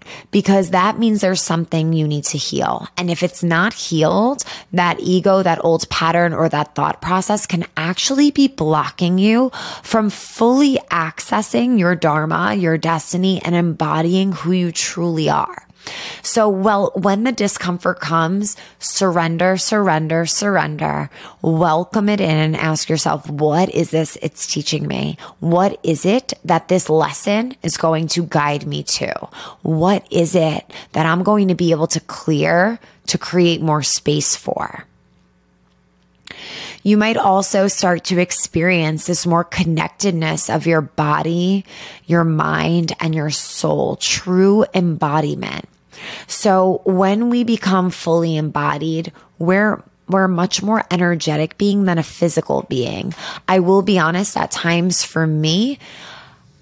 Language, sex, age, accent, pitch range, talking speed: English, female, 20-39, American, 160-195 Hz, 140 wpm